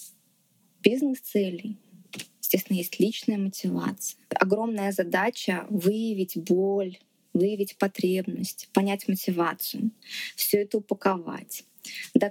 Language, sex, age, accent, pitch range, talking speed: Russian, female, 20-39, native, 195-230 Hz, 85 wpm